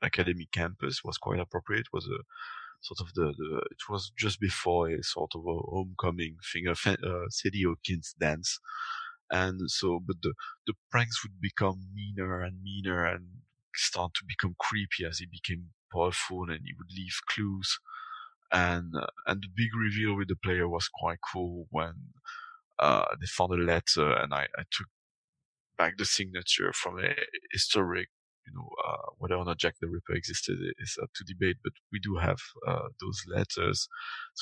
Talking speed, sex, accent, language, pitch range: 175 wpm, male, French, English, 90-115 Hz